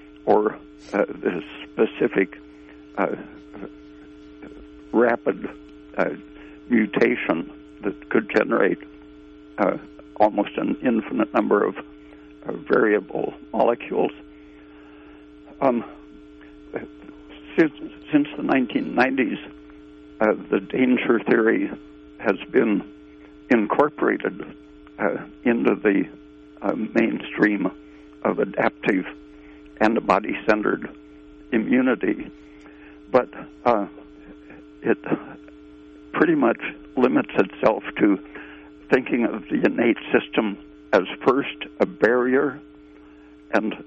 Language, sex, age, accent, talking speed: English, male, 60-79, American, 80 wpm